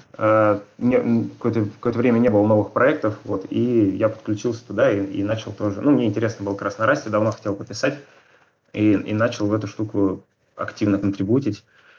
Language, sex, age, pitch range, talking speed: Russian, male, 20-39, 105-125 Hz, 165 wpm